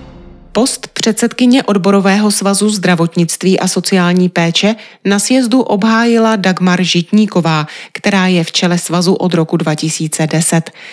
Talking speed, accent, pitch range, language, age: 115 wpm, native, 170-220 Hz, Czech, 30-49